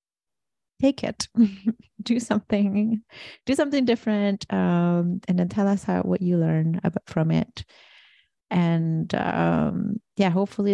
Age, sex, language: 30-49, female, English